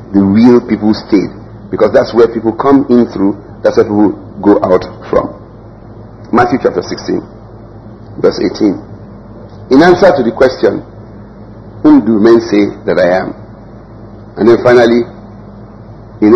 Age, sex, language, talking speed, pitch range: 50-69, male, English, 140 wpm, 105-115 Hz